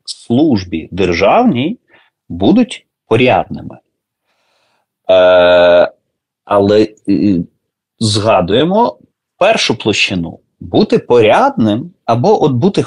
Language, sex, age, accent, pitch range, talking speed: Ukrainian, male, 30-49, native, 90-135 Hz, 60 wpm